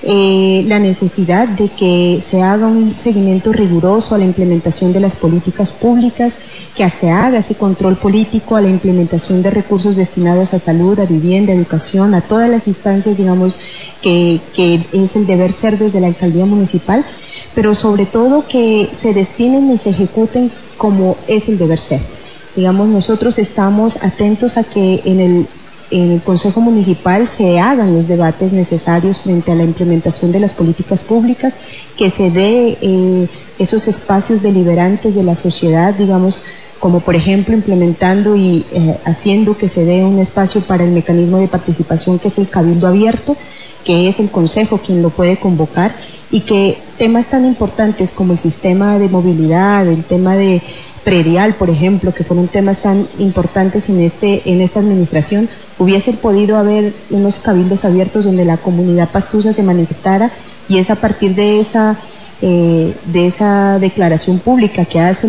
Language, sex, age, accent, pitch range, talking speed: Spanish, female, 30-49, Colombian, 175-210 Hz, 165 wpm